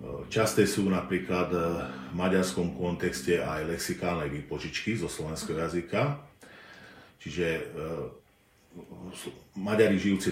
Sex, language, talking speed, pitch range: male, Czech, 85 wpm, 85-105 Hz